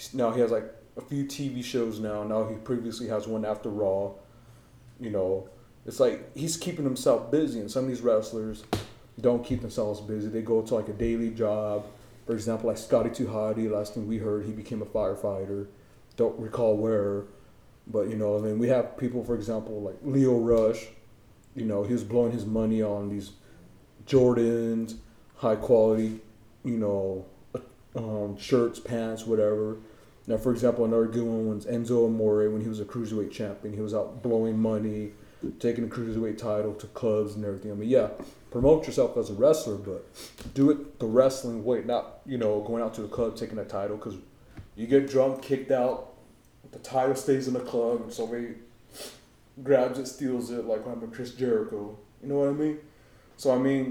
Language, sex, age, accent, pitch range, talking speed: English, male, 30-49, American, 105-125 Hz, 190 wpm